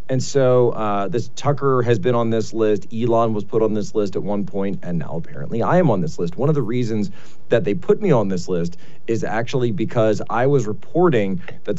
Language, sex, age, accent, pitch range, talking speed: English, male, 40-59, American, 100-135 Hz, 230 wpm